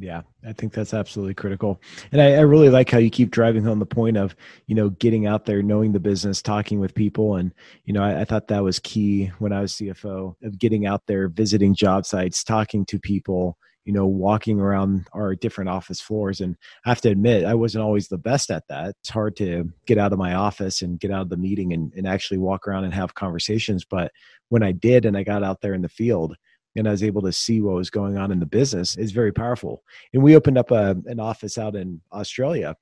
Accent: American